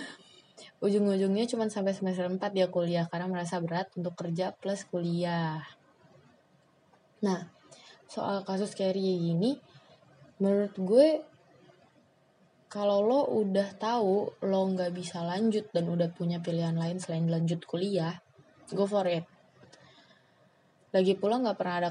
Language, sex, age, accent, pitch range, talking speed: Indonesian, female, 20-39, native, 170-200 Hz, 125 wpm